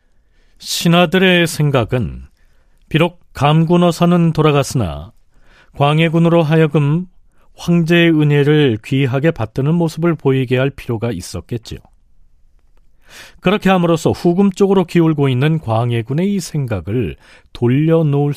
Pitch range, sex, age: 110-170 Hz, male, 40-59